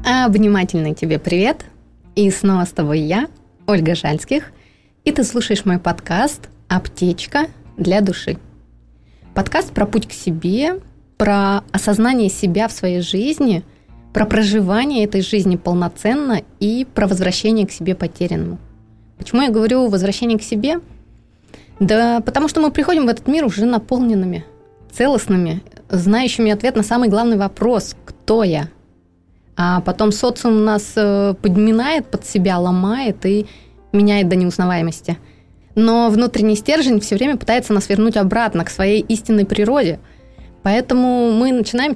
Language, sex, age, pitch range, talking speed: Russian, female, 20-39, 185-235 Hz, 135 wpm